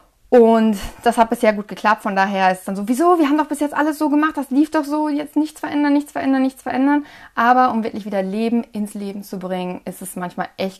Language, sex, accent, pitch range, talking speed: German, female, German, 190-245 Hz, 250 wpm